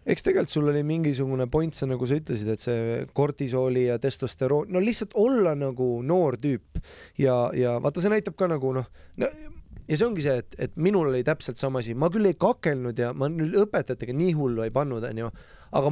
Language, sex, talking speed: English, male, 200 wpm